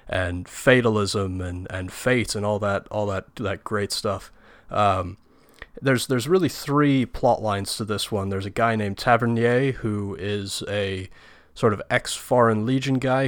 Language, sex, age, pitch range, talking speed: English, male, 30-49, 100-115 Hz, 165 wpm